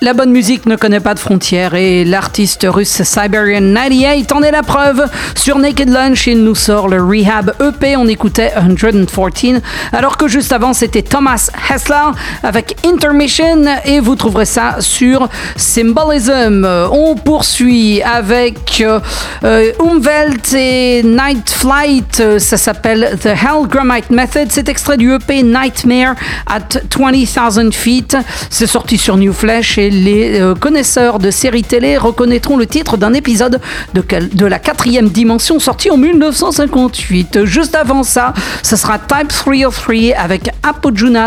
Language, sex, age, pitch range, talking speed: French, female, 50-69, 215-275 Hz, 140 wpm